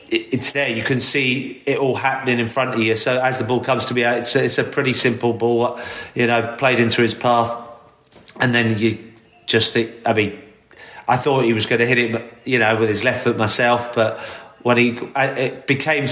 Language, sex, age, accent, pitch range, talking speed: English, male, 30-49, British, 100-120 Hz, 220 wpm